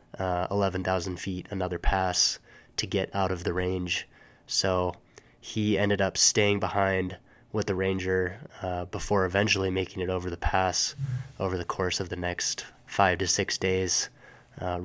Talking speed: 160 wpm